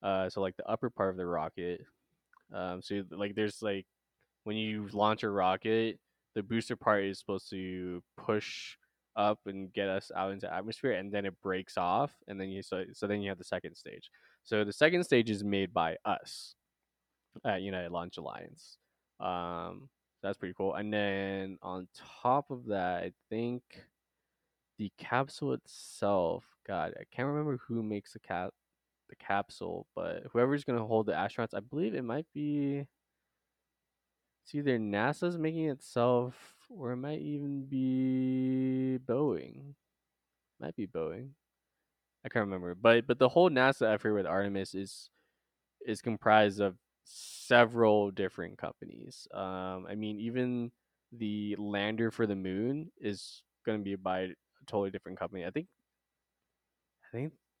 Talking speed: 155 wpm